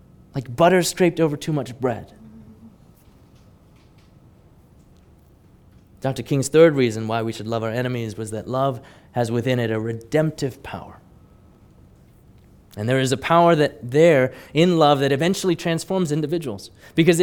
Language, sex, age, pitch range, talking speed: English, male, 30-49, 120-185 Hz, 140 wpm